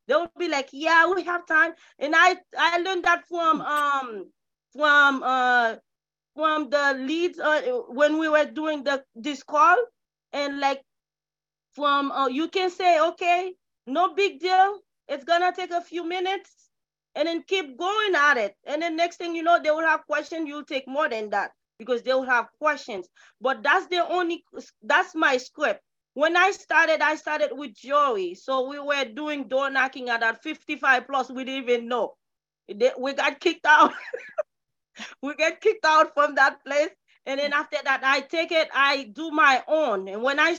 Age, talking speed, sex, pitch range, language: 30-49, 180 wpm, female, 265-330 Hz, English